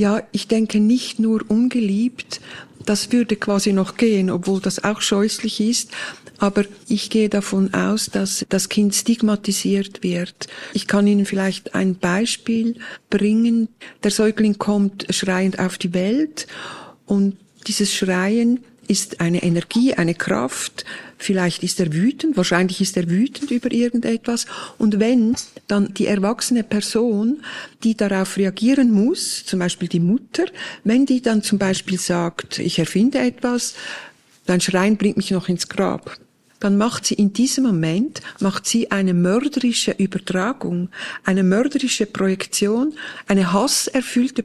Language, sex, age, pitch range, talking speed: German, female, 50-69, 195-230 Hz, 140 wpm